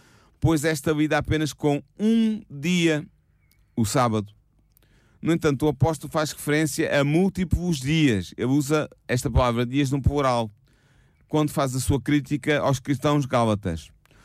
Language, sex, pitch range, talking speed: Portuguese, male, 105-140 Hz, 140 wpm